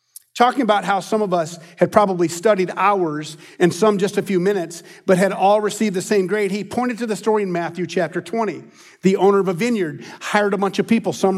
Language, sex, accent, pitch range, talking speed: English, male, American, 170-215 Hz, 225 wpm